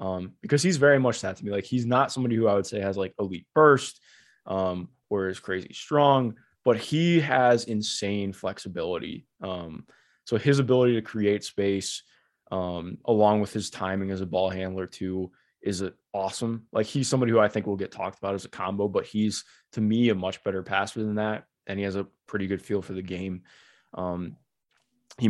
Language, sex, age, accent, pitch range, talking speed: English, male, 20-39, American, 95-120 Hz, 200 wpm